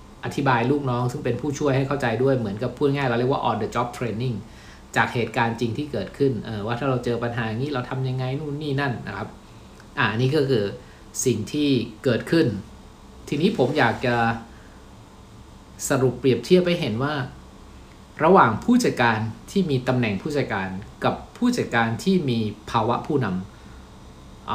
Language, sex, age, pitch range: Thai, male, 60-79, 115-140 Hz